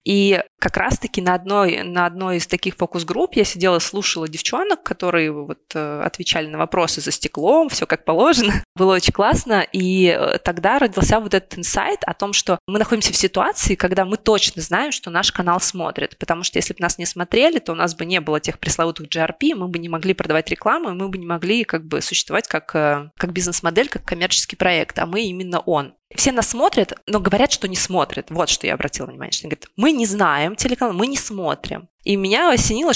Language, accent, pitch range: Russian, native, 170-205 Hz